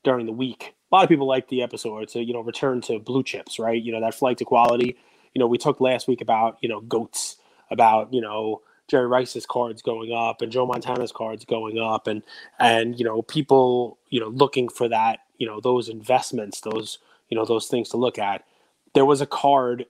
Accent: American